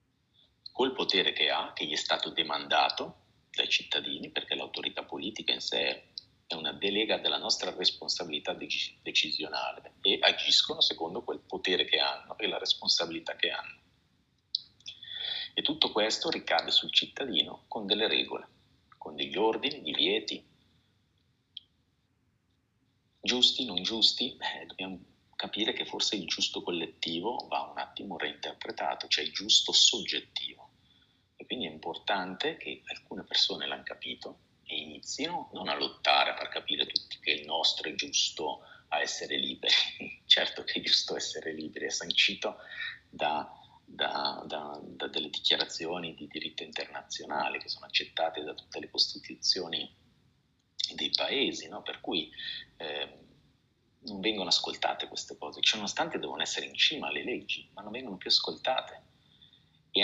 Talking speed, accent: 140 wpm, native